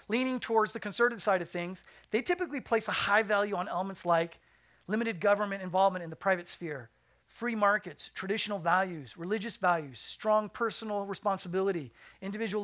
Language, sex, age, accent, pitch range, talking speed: English, male, 40-59, American, 170-210 Hz, 155 wpm